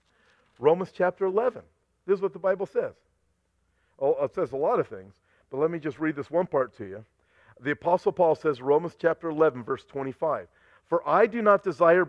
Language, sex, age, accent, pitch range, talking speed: English, male, 50-69, American, 175-245 Hz, 200 wpm